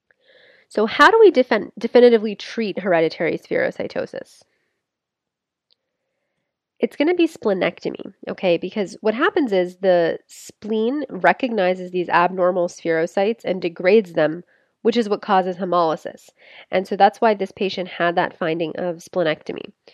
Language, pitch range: English, 180-230 Hz